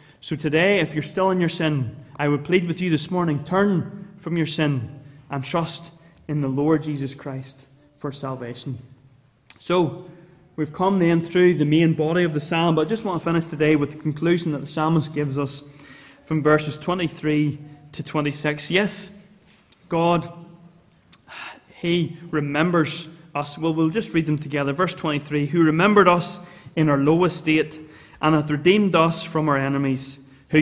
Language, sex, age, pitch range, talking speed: English, male, 20-39, 145-175 Hz, 170 wpm